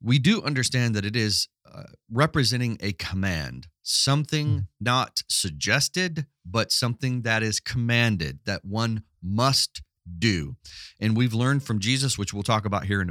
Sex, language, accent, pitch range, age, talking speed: male, English, American, 95-120 Hz, 30-49, 150 wpm